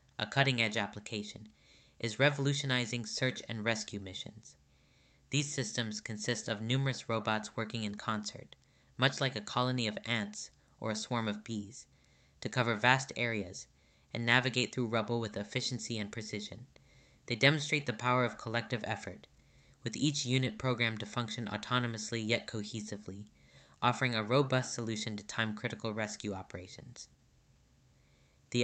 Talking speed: 140 wpm